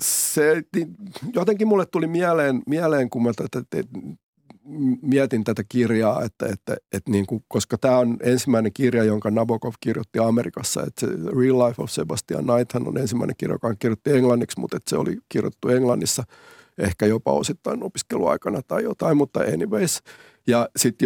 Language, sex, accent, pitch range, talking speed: Finnish, male, native, 115-150 Hz, 160 wpm